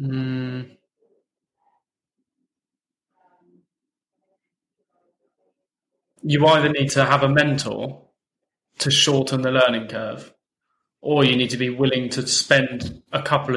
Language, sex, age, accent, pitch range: English, male, 20-39, British, 125-140 Hz